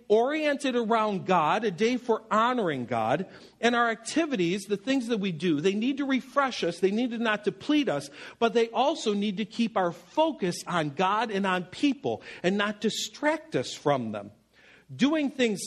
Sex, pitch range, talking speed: male, 170-230 Hz, 185 wpm